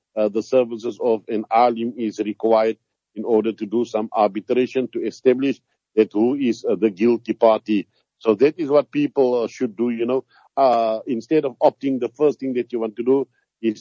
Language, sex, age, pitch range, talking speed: English, male, 60-79, 110-125 Hz, 200 wpm